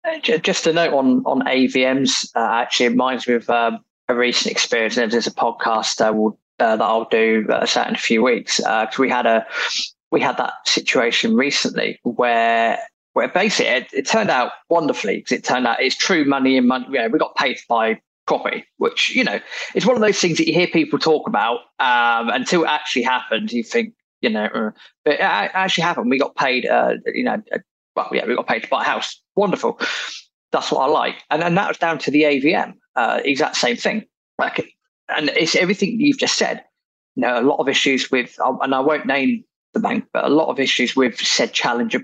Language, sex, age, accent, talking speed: English, male, 20-39, British, 215 wpm